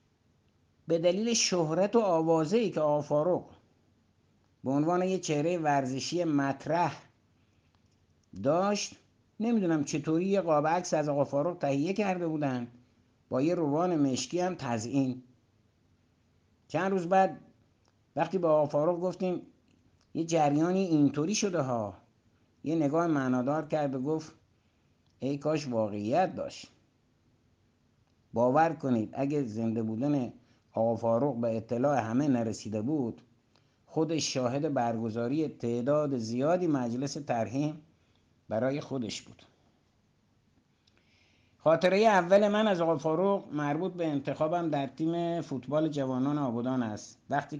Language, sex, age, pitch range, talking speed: Persian, male, 60-79, 115-160 Hz, 110 wpm